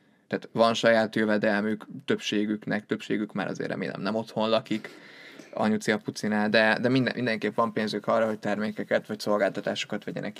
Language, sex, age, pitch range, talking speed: Hungarian, male, 20-39, 110-125 Hz, 140 wpm